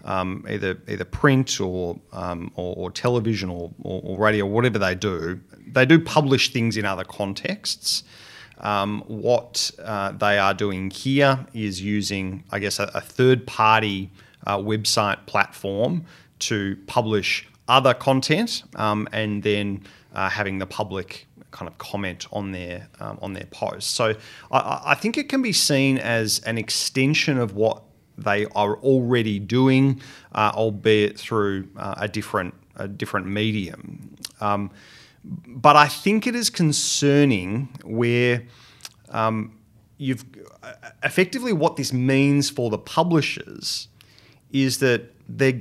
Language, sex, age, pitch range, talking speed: English, male, 40-59, 100-130 Hz, 140 wpm